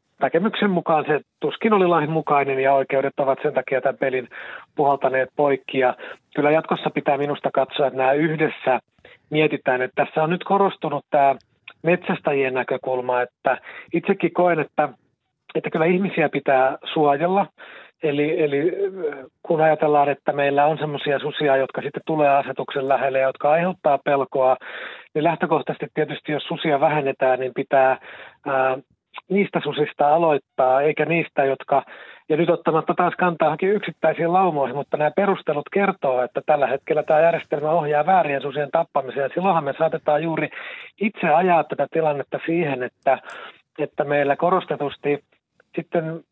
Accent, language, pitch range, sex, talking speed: native, Finnish, 135-165 Hz, male, 145 wpm